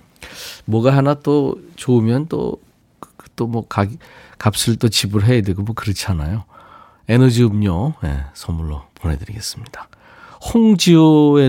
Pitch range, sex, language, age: 95-140 Hz, male, Korean, 40-59